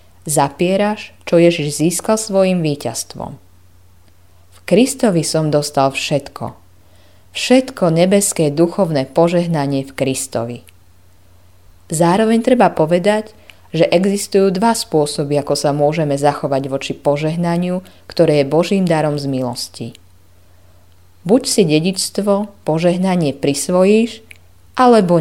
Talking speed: 100 wpm